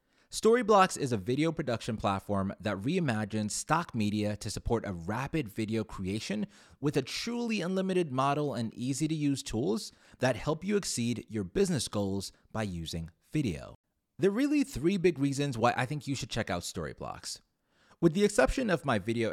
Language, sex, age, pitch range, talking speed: English, male, 30-49, 100-155 Hz, 175 wpm